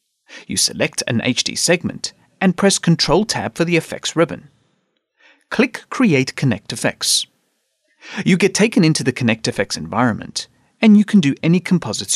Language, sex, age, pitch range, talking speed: English, male, 40-59, 130-205 Hz, 155 wpm